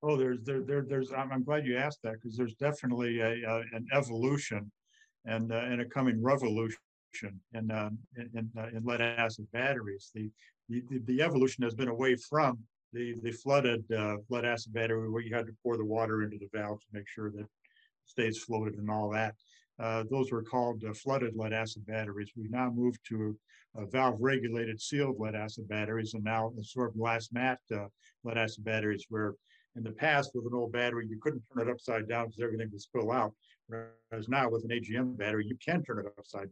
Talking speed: 210 wpm